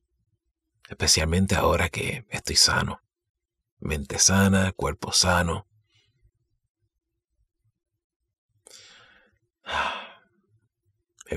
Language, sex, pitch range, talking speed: Spanish, male, 85-110 Hz, 55 wpm